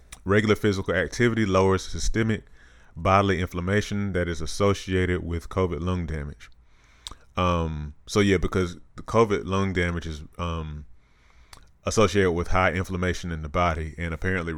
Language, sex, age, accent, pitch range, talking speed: English, male, 30-49, American, 80-95 Hz, 135 wpm